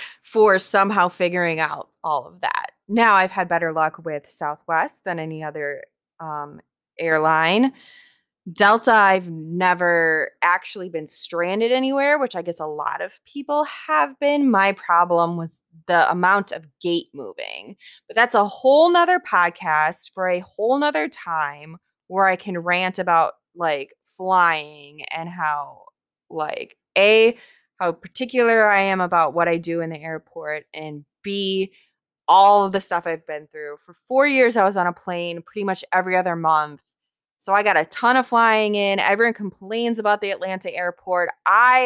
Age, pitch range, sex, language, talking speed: 20-39, 165-225 Hz, female, English, 160 wpm